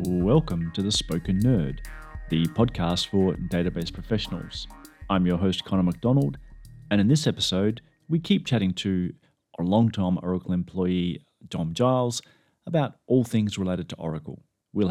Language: English